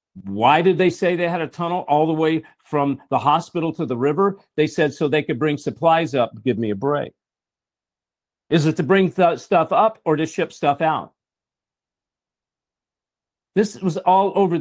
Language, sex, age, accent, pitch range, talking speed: English, male, 50-69, American, 155-195 Hz, 180 wpm